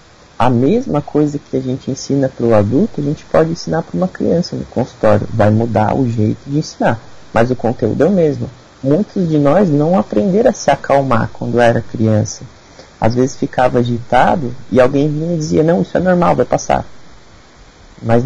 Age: 30-49